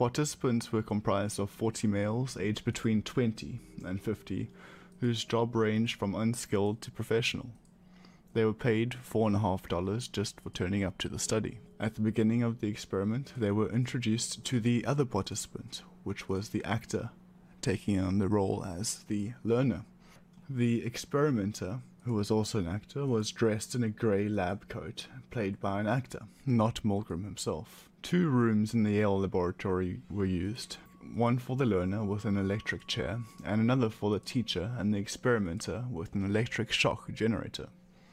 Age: 20-39